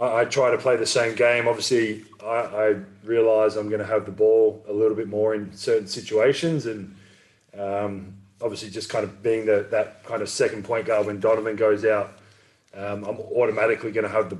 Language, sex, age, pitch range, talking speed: English, male, 20-39, 105-120 Hz, 205 wpm